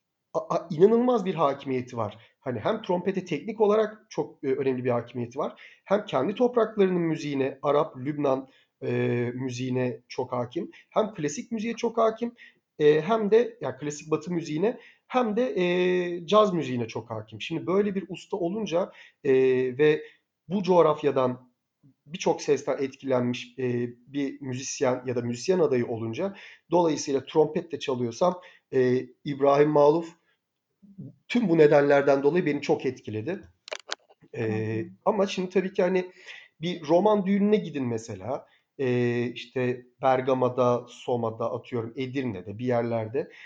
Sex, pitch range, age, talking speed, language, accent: male, 125-180 Hz, 40-59, 135 wpm, Turkish, native